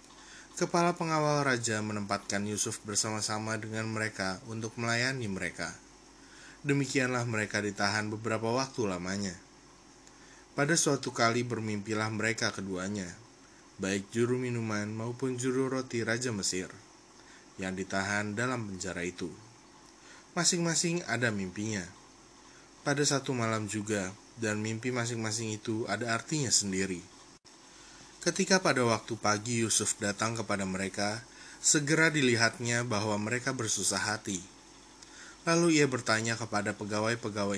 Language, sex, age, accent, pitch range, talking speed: Indonesian, male, 20-39, native, 100-125 Hz, 110 wpm